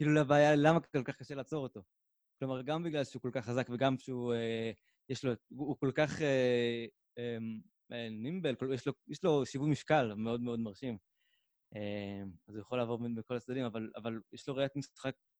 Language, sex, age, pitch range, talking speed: Hebrew, male, 20-39, 120-140 Hz, 205 wpm